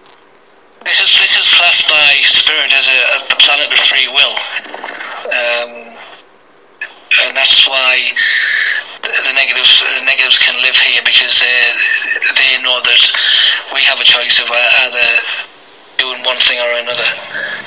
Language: English